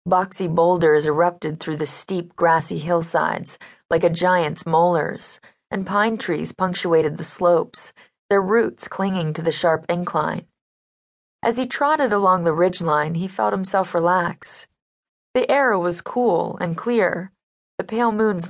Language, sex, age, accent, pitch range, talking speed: English, female, 20-39, American, 165-200 Hz, 145 wpm